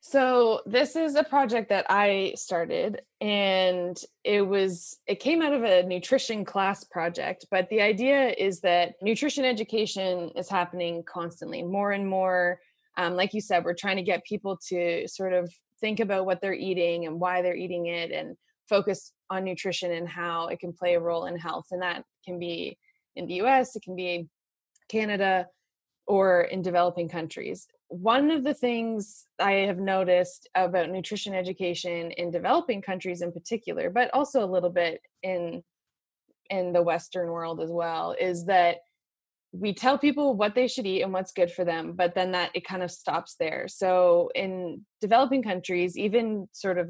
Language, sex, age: English, female, 20-39